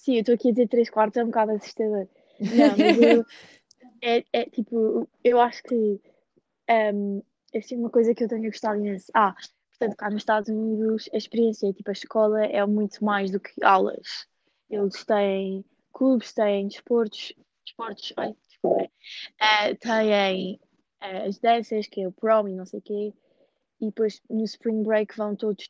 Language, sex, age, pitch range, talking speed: Portuguese, female, 20-39, 200-220 Hz, 180 wpm